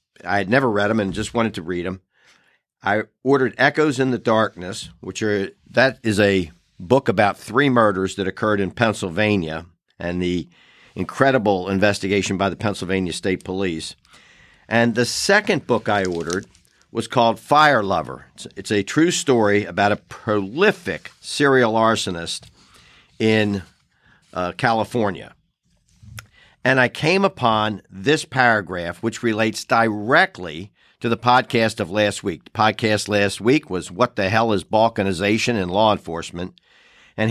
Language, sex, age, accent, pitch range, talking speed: English, male, 50-69, American, 95-120 Hz, 145 wpm